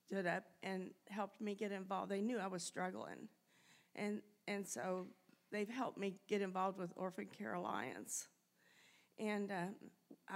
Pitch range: 185-215 Hz